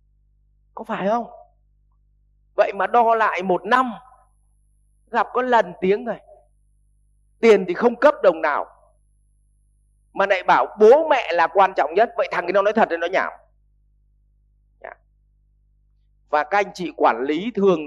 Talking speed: 150 wpm